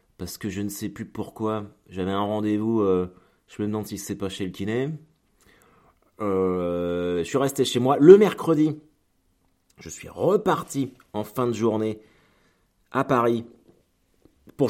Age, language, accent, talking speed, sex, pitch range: 30-49, French, French, 155 wpm, male, 95-130 Hz